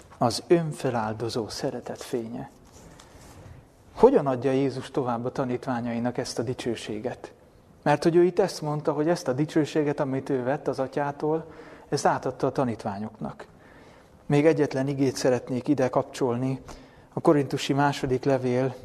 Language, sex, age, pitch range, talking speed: Hungarian, male, 30-49, 125-145 Hz, 135 wpm